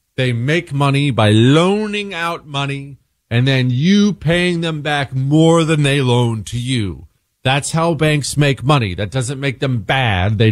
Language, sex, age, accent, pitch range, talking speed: English, male, 40-59, American, 110-150 Hz, 170 wpm